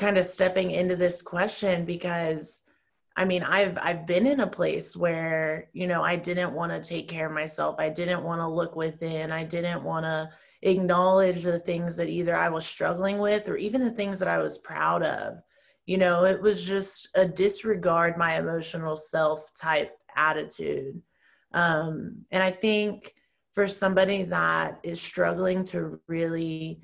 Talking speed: 170 wpm